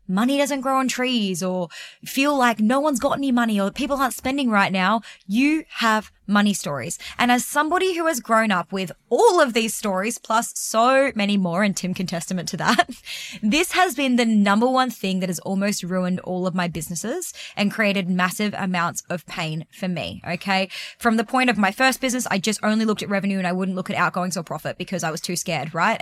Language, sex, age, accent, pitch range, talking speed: English, female, 20-39, Australian, 180-245 Hz, 220 wpm